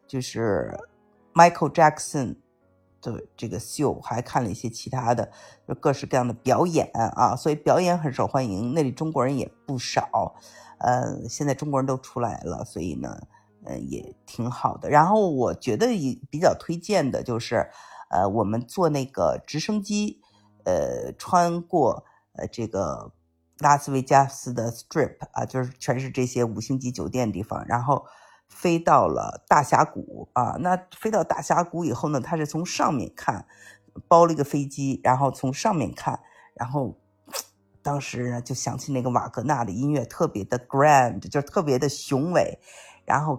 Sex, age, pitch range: female, 50-69, 120-150 Hz